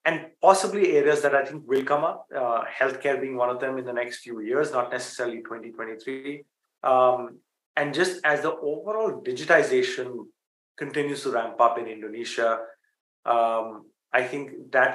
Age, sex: 30-49, male